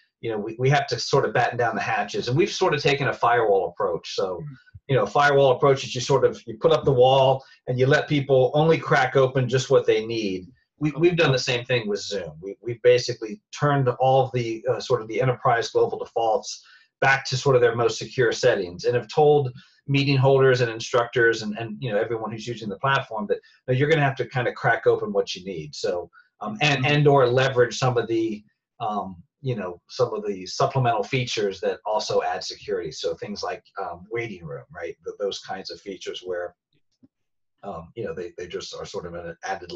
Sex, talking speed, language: male, 225 wpm, English